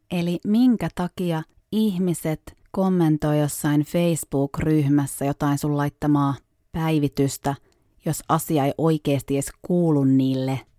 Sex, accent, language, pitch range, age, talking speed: female, native, Finnish, 140-185 Hz, 30-49, 100 wpm